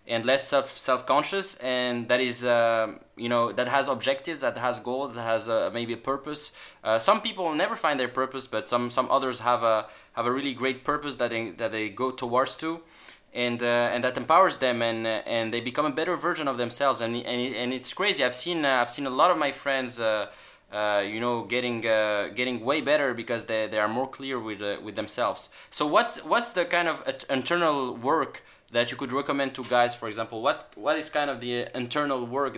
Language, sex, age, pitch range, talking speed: English, male, 20-39, 110-135 Hz, 225 wpm